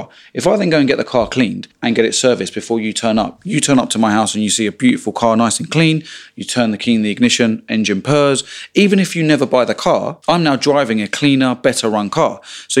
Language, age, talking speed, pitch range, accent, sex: English, 30-49, 265 wpm, 115-145 Hz, British, male